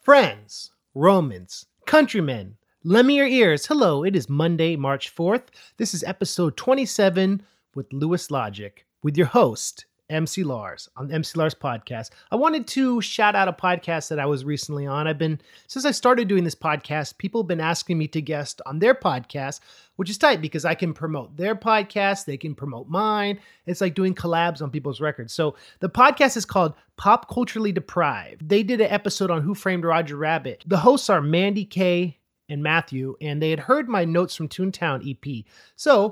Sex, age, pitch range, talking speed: male, 30-49, 145-200 Hz, 190 wpm